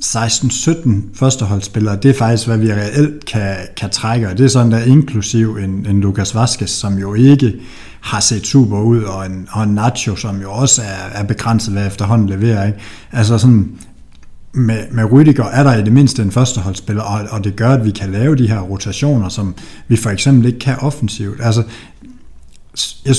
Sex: male